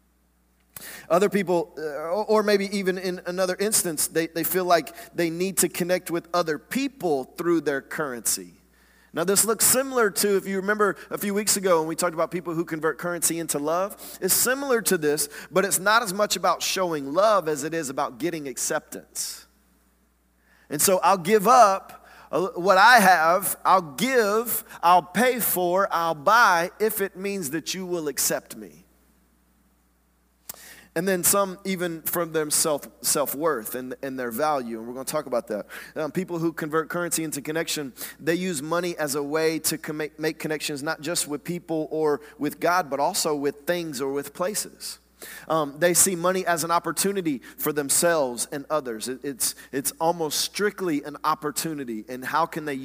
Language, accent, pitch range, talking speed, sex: English, American, 150-190 Hz, 175 wpm, male